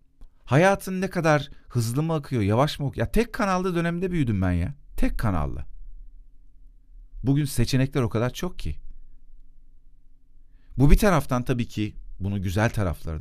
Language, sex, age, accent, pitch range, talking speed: Turkish, male, 40-59, native, 100-155 Hz, 145 wpm